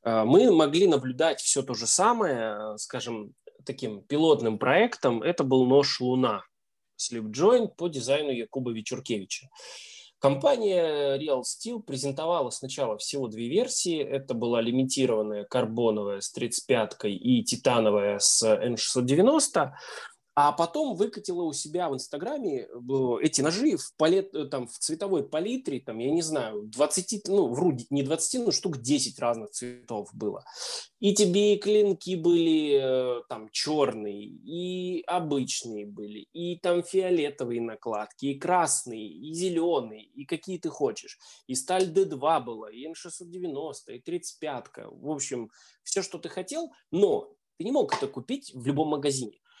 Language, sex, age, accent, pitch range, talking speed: Russian, male, 20-39, native, 125-195 Hz, 140 wpm